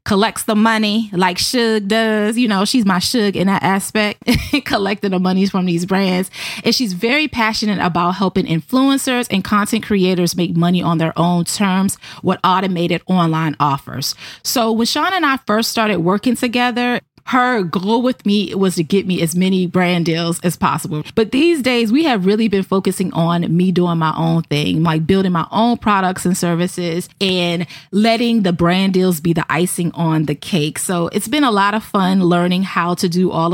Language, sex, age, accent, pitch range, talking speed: English, female, 20-39, American, 175-225 Hz, 190 wpm